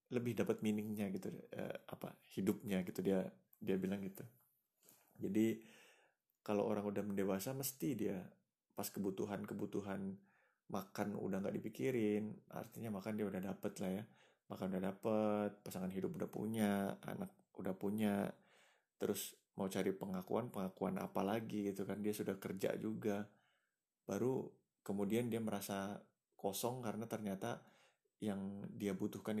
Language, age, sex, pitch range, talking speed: Indonesian, 30-49, male, 100-110 Hz, 135 wpm